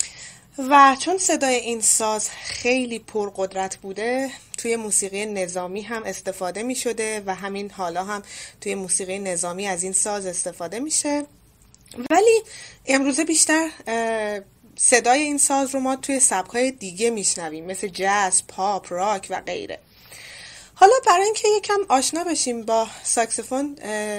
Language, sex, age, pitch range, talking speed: Persian, female, 20-39, 185-250 Hz, 135 wpm